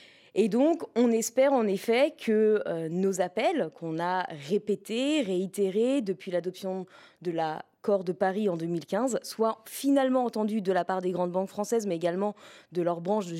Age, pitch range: 20-39, 185-230 Hz